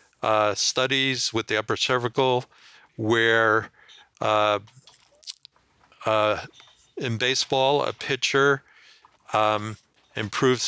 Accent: American